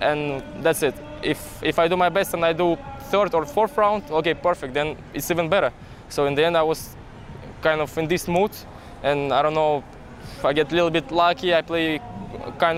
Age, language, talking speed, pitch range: 20-39, English, 220 wpm, 150-175 Hz